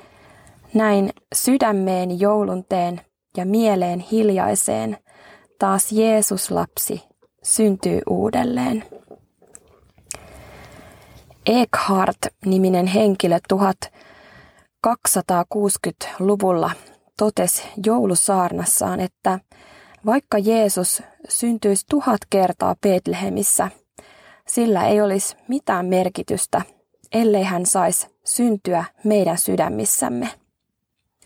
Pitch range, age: 185-215 Hz, 20-39